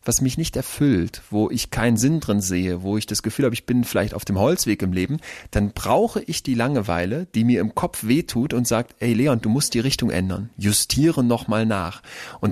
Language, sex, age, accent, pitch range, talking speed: German, male, 30-49, German, 105-130 Hz, 220 wpm